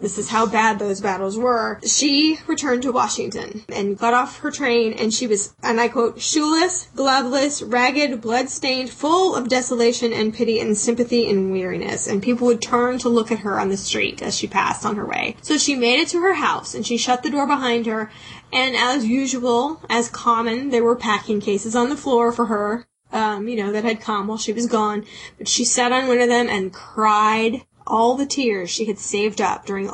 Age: 10-29